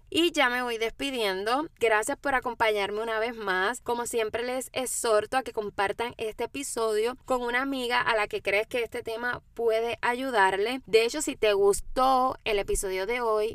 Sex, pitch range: female, 210-260 Hz